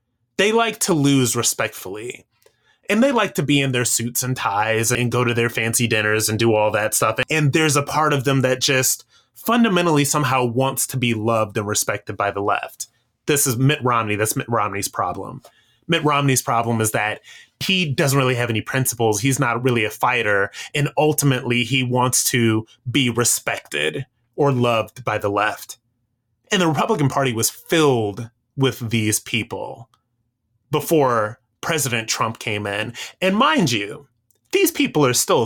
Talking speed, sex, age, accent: 175 wpm, male, 30-49, American